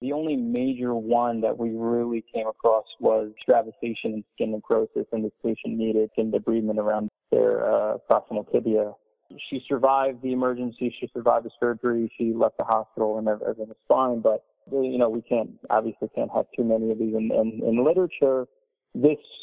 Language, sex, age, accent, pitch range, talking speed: English, male, 30-49, American, 110-135 Hz, 180 wpm